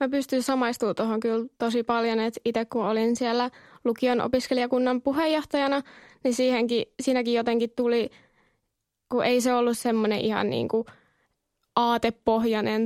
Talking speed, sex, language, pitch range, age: 130 wpm, female, Finnish, 225-245 Hz, 20-39